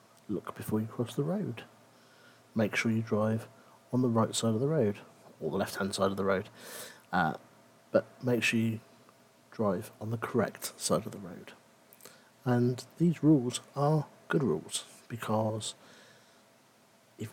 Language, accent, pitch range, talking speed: English, British, 110-130 Hz, 155 wpm